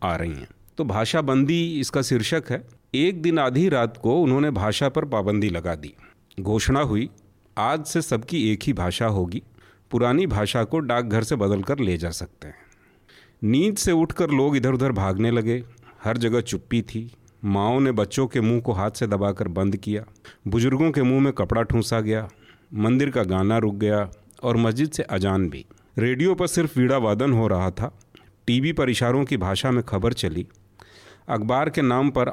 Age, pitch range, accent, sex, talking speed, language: 40-59, 105-135 Hz, native, male, 185 wpm, Hindi